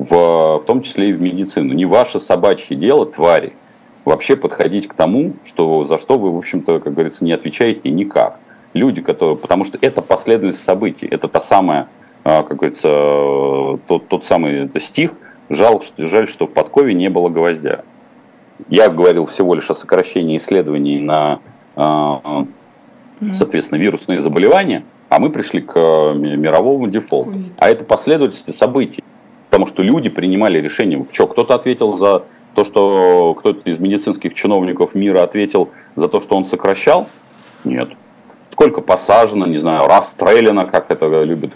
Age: 40-59